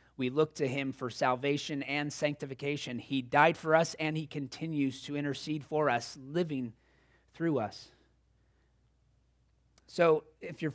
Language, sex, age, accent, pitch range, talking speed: English, male, 30-49, American, 135-170 Hz, 140 wpm